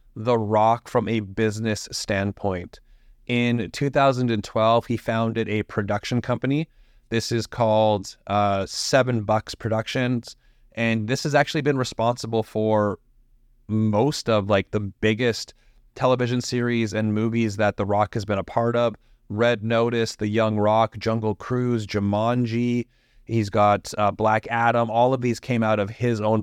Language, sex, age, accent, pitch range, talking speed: English, male, 30-49, American, 105-120 Hz, 150 wpm